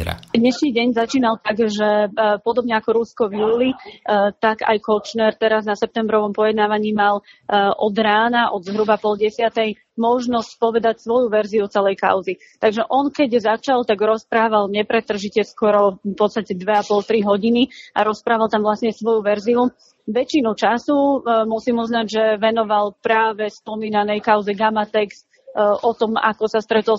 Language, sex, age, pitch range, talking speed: Slovak, female, 30-49, 210-235 Hz, 140 wpm